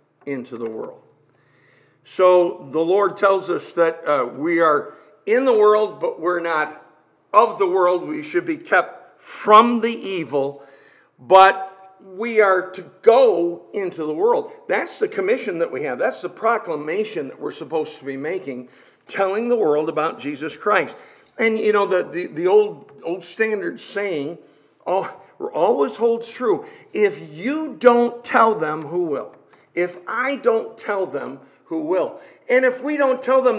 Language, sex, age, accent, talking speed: English, male, 50-69, American, 165 wpm